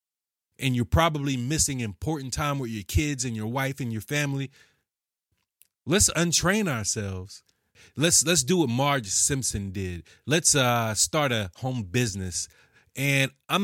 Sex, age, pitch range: male, 30-49, 110-140 Hz